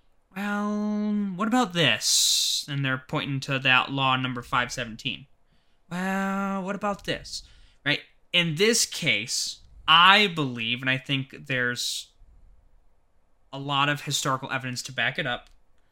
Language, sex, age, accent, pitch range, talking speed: English, male, 20-39, American, 125-165 Hz, 130 wpm